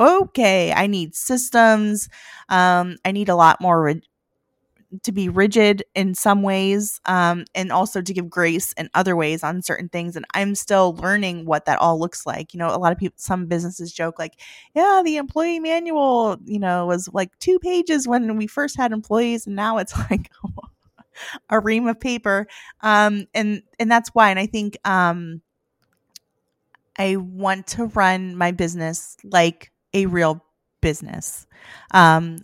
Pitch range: 170-210 Hz